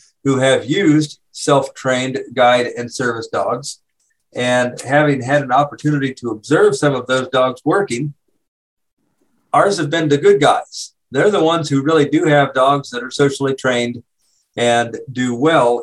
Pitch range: 120-145 Hz